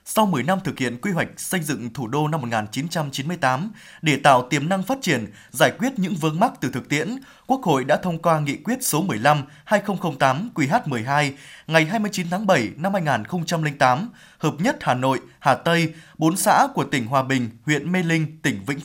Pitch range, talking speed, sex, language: 140-190 Hz, 180 wpm, male, Vietnamese